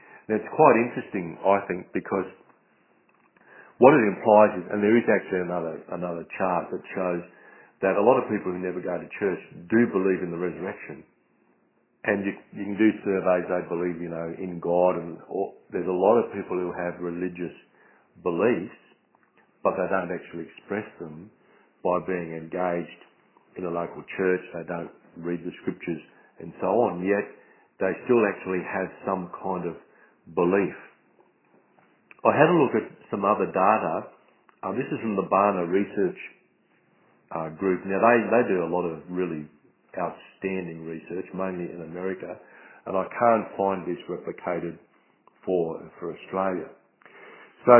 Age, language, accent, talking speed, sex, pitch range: 50-69, English, Australian, 160 wpm, male, 85-100 Hz